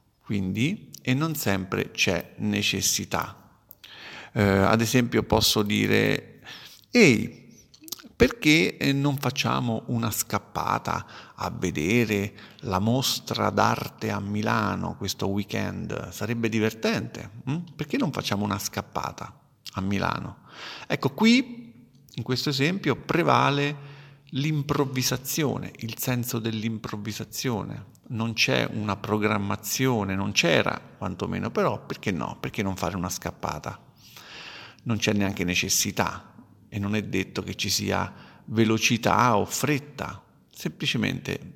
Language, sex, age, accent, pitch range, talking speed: Italian, male, 50-69, native, 100-125 Hz, 110 wpm